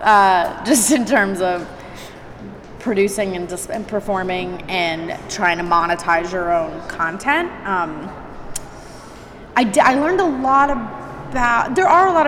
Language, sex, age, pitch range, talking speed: English, female, 20-39, 180-225 Hz, 130 wpm